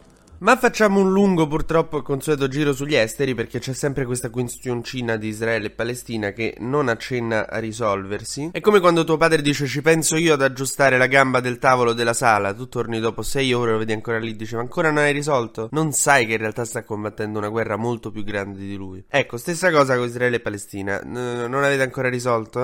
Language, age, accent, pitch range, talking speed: Italian, 20-39, native, 110-135 Hz, 215 wpm